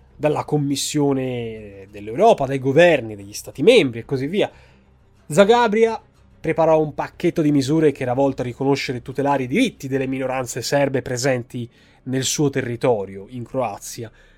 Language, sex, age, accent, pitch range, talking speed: Italian, male, 20-39, native, 125-165 Hz, 145 wpm